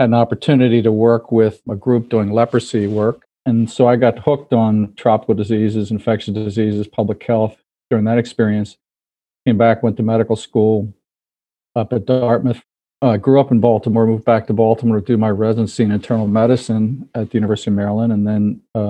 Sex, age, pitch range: male, 50-69, 105-120 Hz